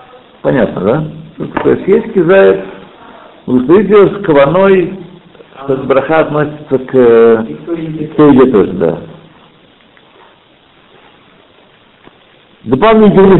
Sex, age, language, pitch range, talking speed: male, 60-79, Russian, 125-180 Hz, 70 wpm